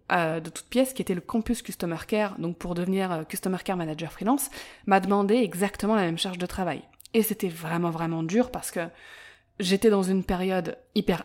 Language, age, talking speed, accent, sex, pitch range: French, 20-39, 195 wpm, French, female, 175-220 Hz